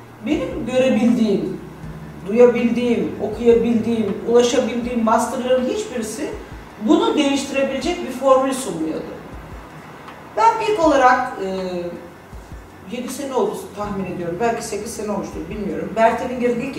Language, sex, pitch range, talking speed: Turkish, female, 190-265 Hz, 100 wpm